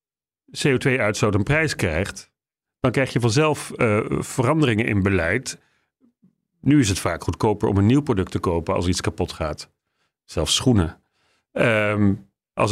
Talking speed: 140 wpm